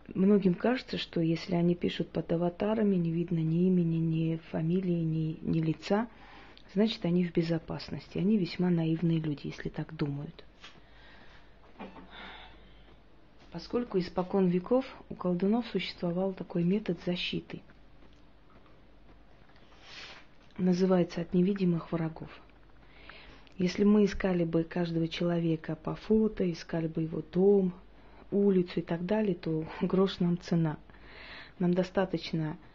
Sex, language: female, Russian